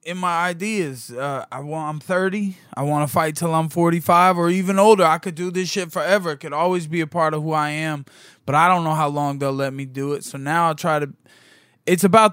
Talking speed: 250 wpm